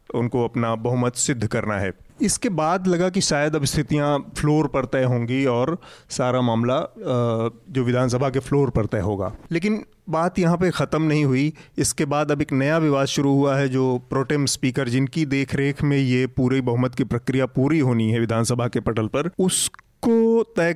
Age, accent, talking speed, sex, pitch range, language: 30-49, native, 180 wpm, male, 125-150 Hz, Hindi